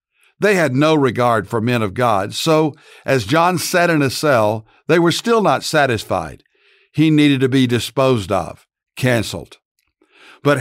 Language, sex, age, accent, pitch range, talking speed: English, male, 60-79, American, 120-155 Hz, 160 wpm